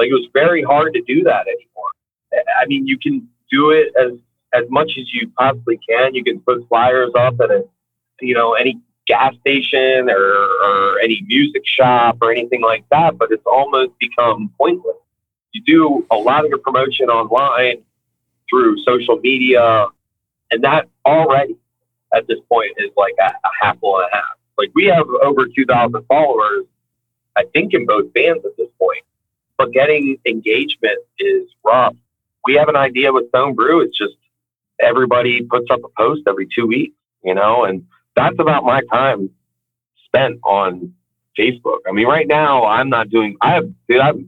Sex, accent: male, American